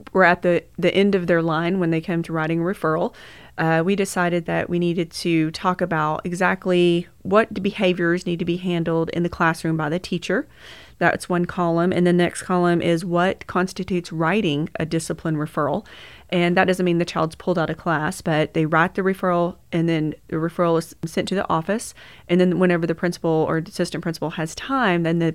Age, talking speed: 30-49, 205 wpm